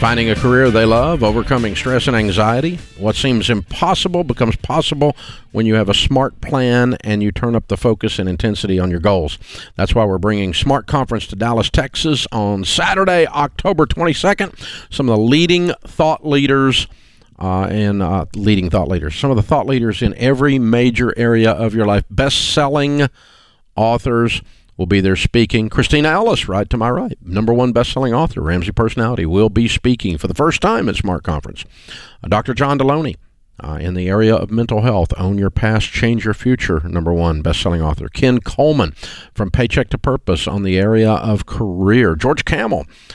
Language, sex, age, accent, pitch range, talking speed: English, male, 50-69, American, 95-125 Hz, 175 wpm